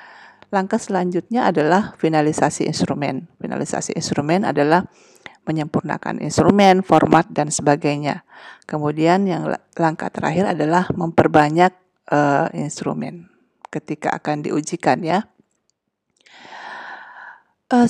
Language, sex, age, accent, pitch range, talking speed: Indonesian, female, 40-59, native, 155-200 Hz, 85 wpm